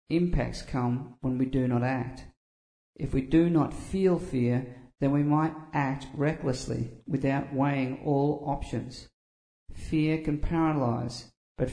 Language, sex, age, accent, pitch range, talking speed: English, male, 50-69, Australian, 125-150 Hz, 135 wpm